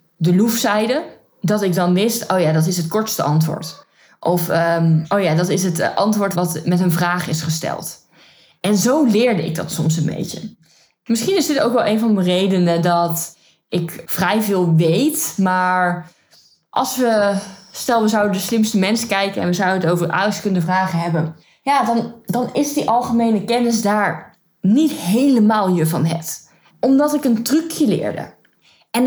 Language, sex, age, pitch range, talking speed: Dutch, female, 20-39, 175-235 Hz, 180 wpm